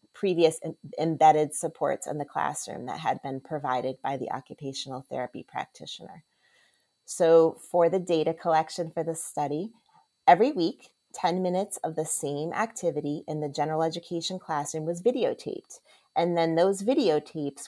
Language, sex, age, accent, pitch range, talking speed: English, female, 30-49, American, 150-185 Hz, 145 wpm